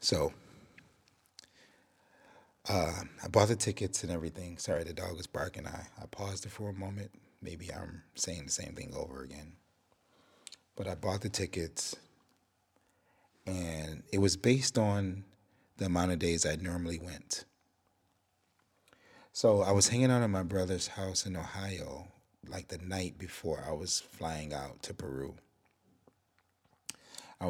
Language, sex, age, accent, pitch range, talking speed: English, male, 30-49, American, 90-110 Hz, 145 wpm